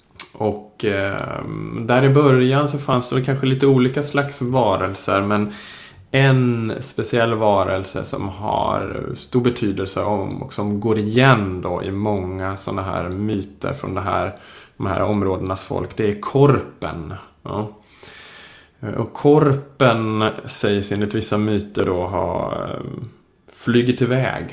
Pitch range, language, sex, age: 105-130 Hz, Swedish, male, 20-39